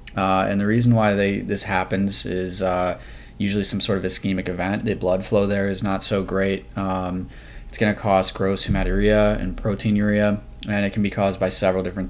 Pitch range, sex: 95-105 Hz, male